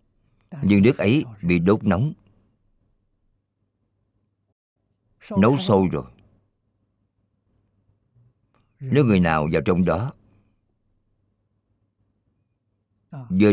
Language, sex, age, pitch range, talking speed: Vietnamese, male, 50-69, 100-110 Hz, 70 wpm